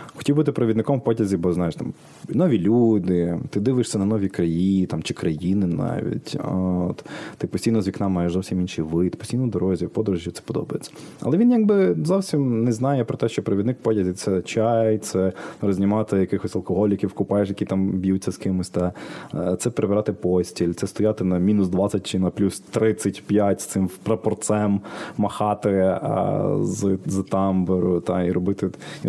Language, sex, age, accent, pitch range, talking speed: Ukrainian, male, 20-39, native, 90-110 Hz, 170 wpm